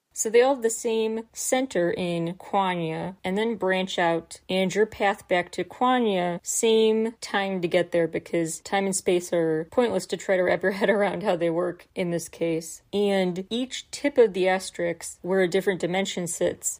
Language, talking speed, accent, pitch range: English, 195 wpm, American, 175-210 Hz